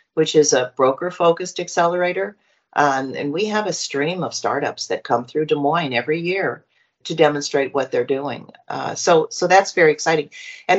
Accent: American